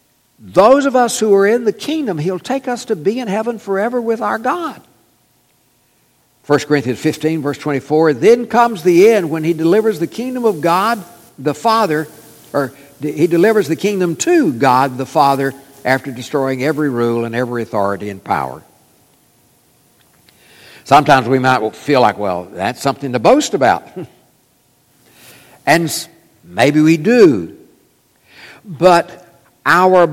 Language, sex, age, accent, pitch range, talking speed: English, male, 60-79, American, 135-220 Hz, 145 wpm